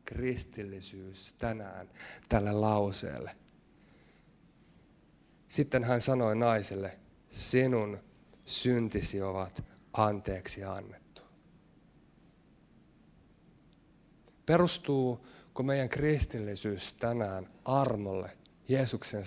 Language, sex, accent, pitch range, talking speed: Finnish, male, native, 105-135 Hz, 60 wpm